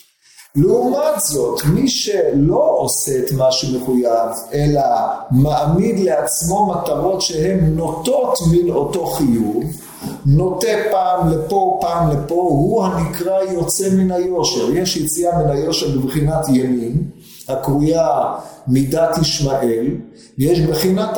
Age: 40-59